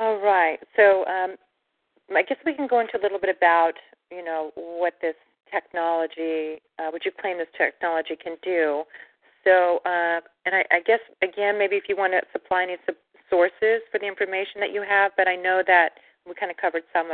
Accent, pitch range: American, 165-195 Hz